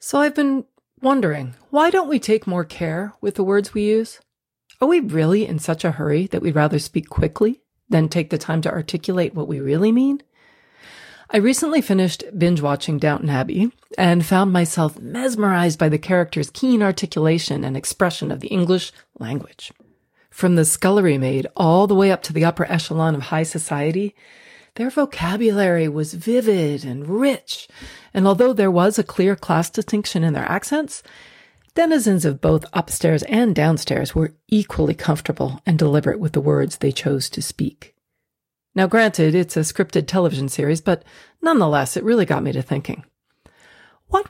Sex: female